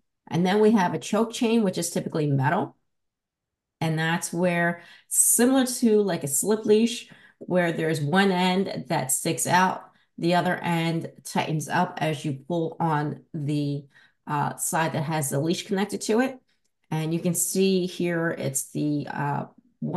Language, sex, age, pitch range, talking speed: English, female, 30-49, 150-190 Hz, 160 wpm